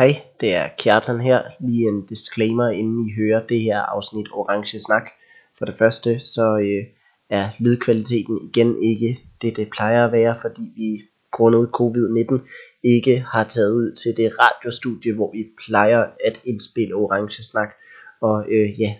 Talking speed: 155 wpm